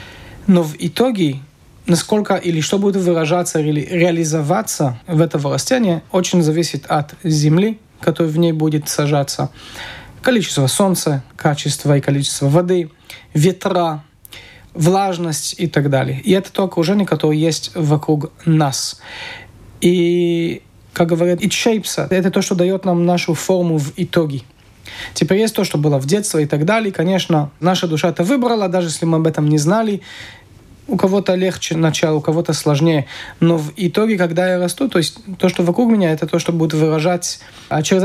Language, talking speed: Russian, 165 wpm